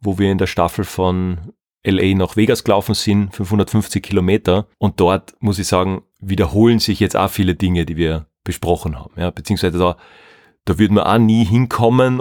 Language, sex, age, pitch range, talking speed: German, male, 30-49, 100-115 Hz, 180 wpm